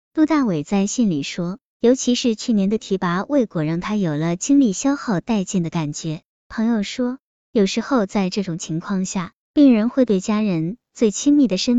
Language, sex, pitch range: Chinese, male, 185-245 Hz